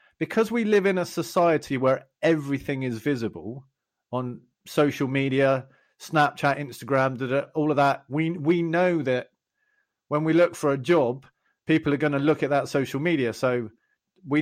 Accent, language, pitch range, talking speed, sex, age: British, English, 125-155 Hz, 160 wpm, male, 40-59